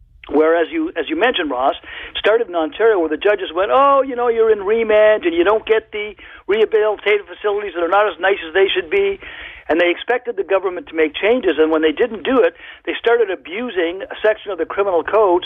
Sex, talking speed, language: male, 225 wpm, English